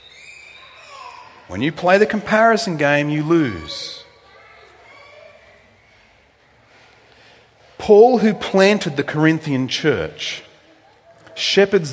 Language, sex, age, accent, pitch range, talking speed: English, male, 40-59, Australian, 150-230 Hz, 75 wpm